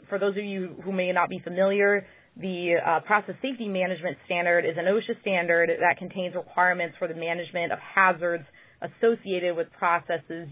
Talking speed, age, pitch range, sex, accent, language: 170 wpm, 20-39, 165-185 Hz, female, American, English